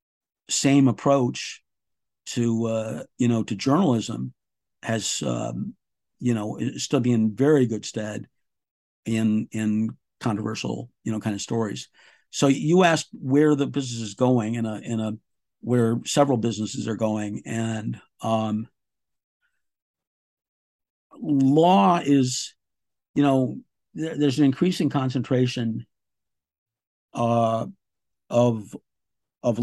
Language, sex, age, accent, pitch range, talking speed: English, male, 50-69, American, 110-125 Hz, 115 wpm